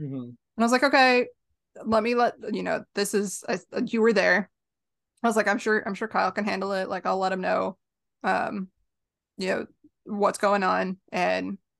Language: English